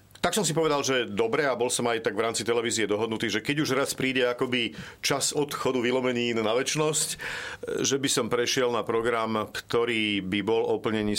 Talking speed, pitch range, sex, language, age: 195 wpm, 110-130 Hz, male, Slovak, 50-69